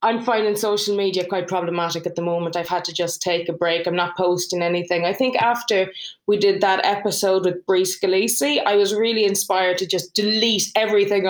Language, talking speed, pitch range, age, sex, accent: English, 200 wpm, 180-225 Hz, 20-39, female, Irish